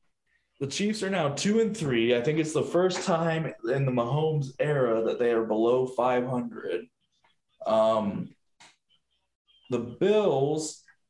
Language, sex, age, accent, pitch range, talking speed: English, male, 20-39, American, 115-175 Hz, 135 wpm